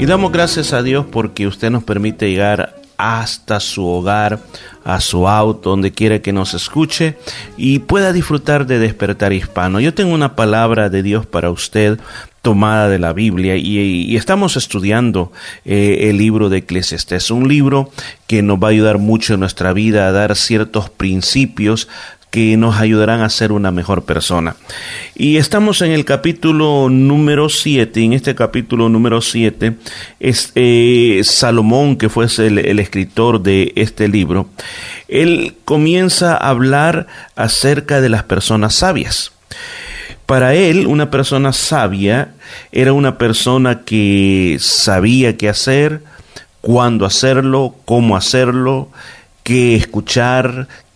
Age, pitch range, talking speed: 30-49, 105-135 Hz, 140 wpm